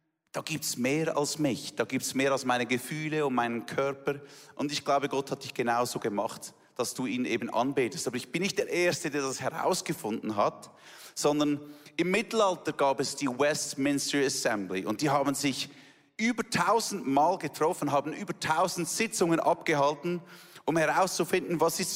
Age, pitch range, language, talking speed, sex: 30-49, 135-165 Hz, German, 175 wpm, male